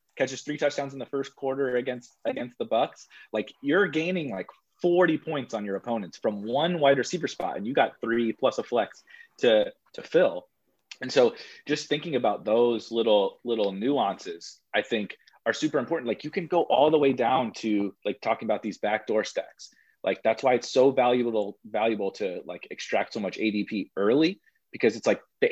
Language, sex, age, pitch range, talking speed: English, male, 30-49, 115-160 Hz, 195 wpm